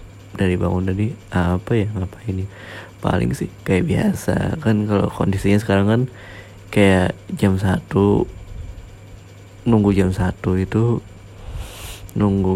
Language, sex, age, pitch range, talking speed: Indonesian, male, 20-39, 95-105 Hz, 115 wpm